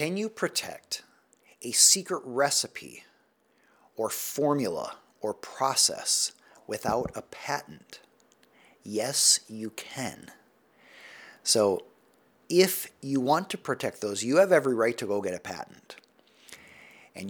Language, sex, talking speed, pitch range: English, male, 115 wpm, 115-160 Hz